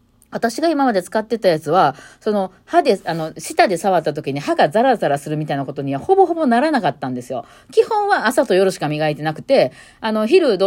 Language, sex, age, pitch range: Japanese, female, 40-59, 150-235 Hz